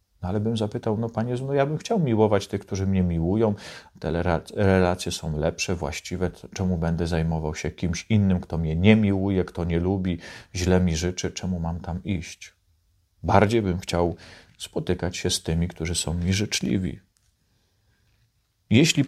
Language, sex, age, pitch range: Polish, male, 40-59, 85-105 Hz